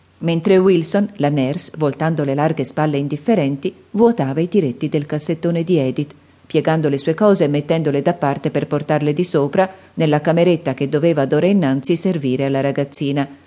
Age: 40-59